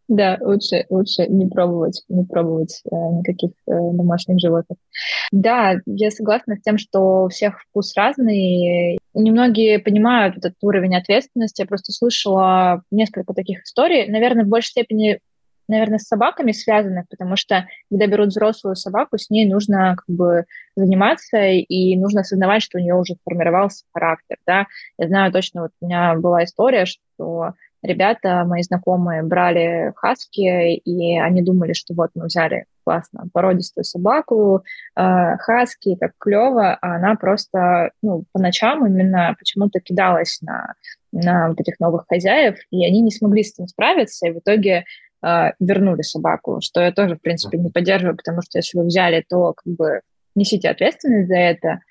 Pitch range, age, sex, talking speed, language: 175-210 Hz, 20-39, female, 160 wpm, Russian